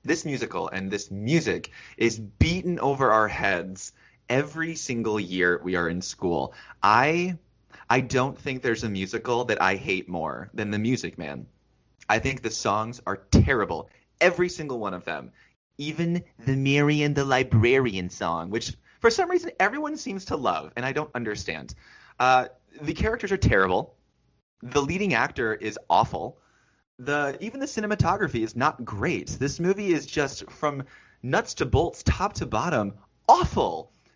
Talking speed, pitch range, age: 160 wpm, 105-145 Hz, 20-39